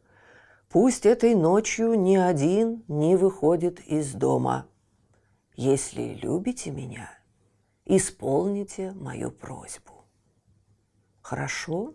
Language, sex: Russian, female